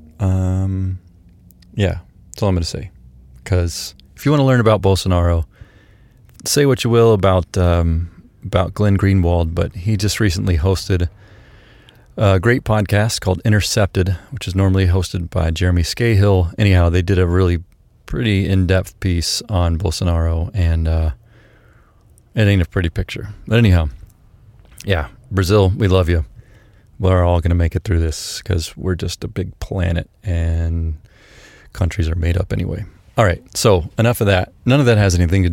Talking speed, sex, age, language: 165 wpm, male, 30-49, English